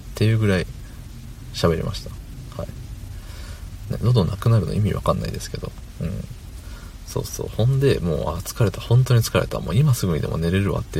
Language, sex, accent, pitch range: Japanese, male, native, 85-115 Hz